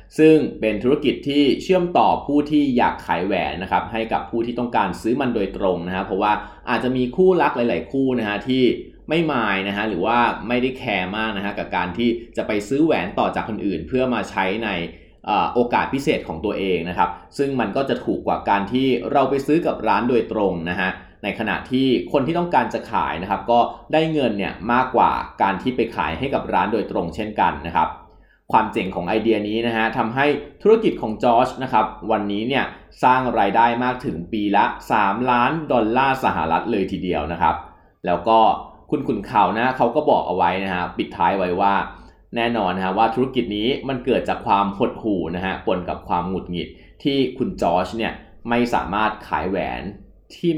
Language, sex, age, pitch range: Thai, male, 20-39, 100-130 Hz